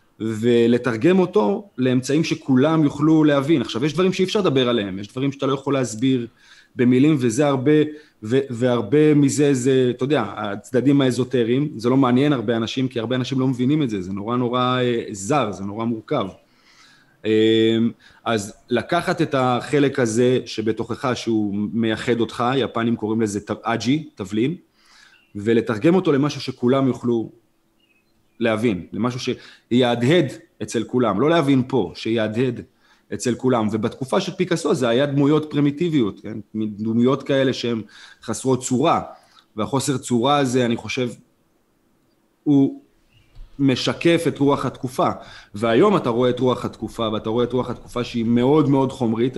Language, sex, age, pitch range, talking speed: Hebrew, male, 30-49, 115-140 Hz, 140 wpm